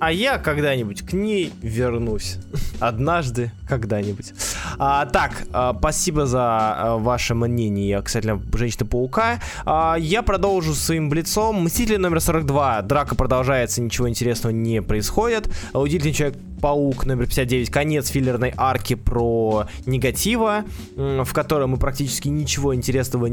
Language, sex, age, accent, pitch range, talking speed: Russian, male, 20-39, native, 115-150 Hz, 125 wpm